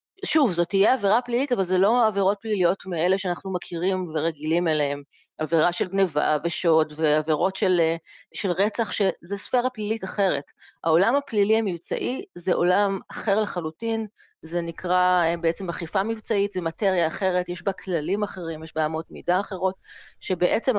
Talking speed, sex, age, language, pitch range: 150 wpm, female, 30-49, Hebrew, 165-205 Hz